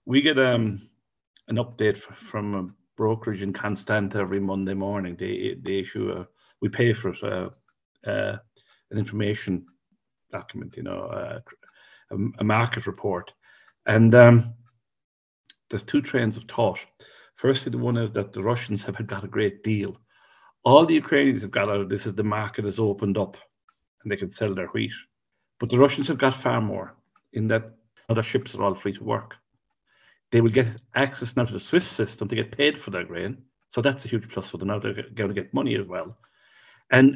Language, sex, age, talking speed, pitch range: English, male, 50-69, 190 wpm, 105-125 Hz